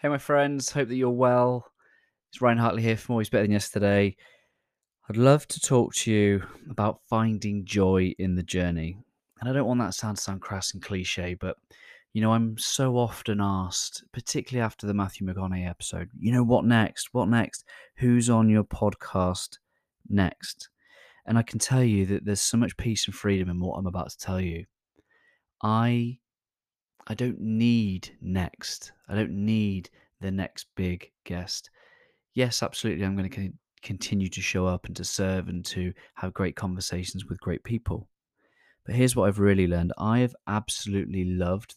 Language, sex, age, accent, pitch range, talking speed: English, male, 20-39, British, 95-115 Hz, 175 wpm